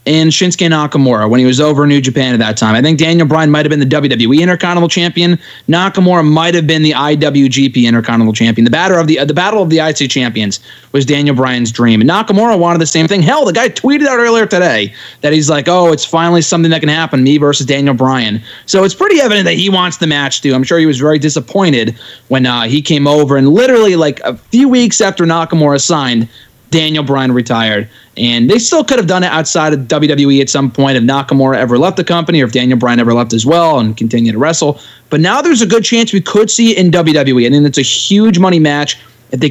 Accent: American